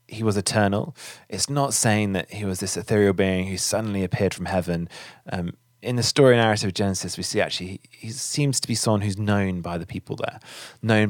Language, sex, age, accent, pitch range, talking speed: English, male, 20-39, British, 95-120 Hz, 215 wpm